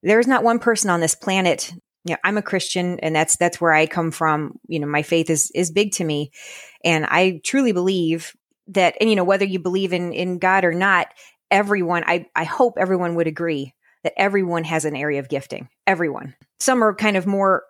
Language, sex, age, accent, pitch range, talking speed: English, female, 30-49, American, 170-210 Hz, 215 wpm